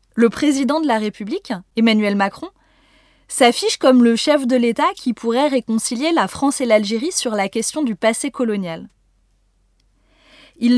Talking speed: 150 wpm